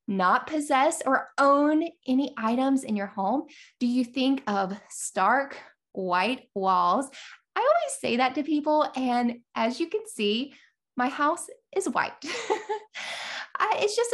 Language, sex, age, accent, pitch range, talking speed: English, female, 10-29, American, 210-315 Hz, 140 wpm